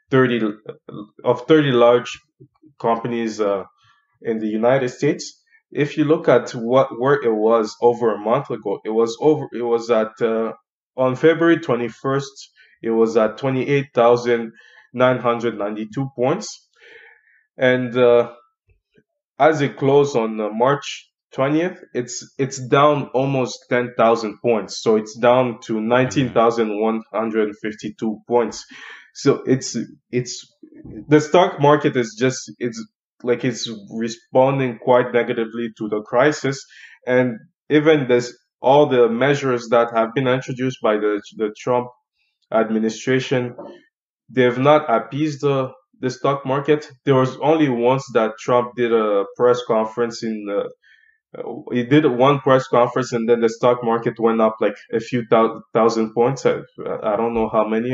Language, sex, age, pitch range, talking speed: English, male, 20-39, 115-140 Hz, 150 wpm